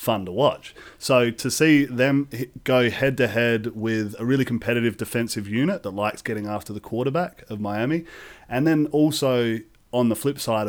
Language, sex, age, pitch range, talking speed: English, male, 30-49, 110-130 Hz, 170 wpm